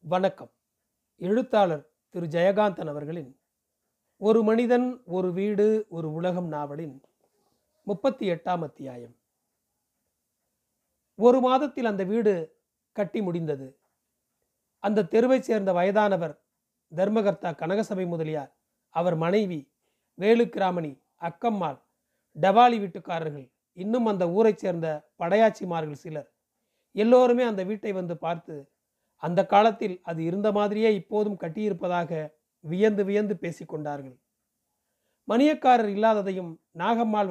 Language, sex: Tamil, male